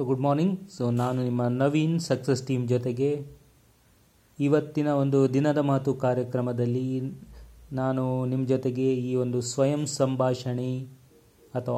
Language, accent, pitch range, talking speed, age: English, Indian, 125-140 Hz, 95 wpm, 30-49